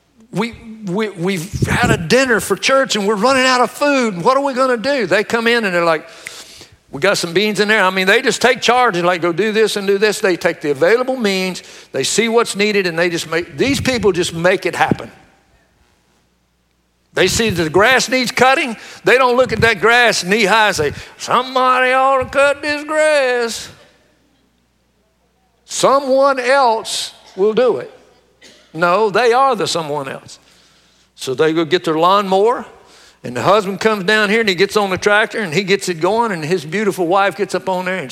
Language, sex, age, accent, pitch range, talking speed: English, male, 60-79, American, 155-230 Hz, 210 wpm